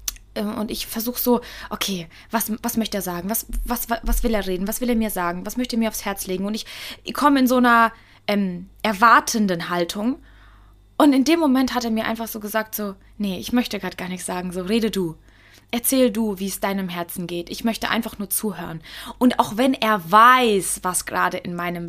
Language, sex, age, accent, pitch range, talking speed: German, female, 20-39, German, 210-245 Hz, 215 wpm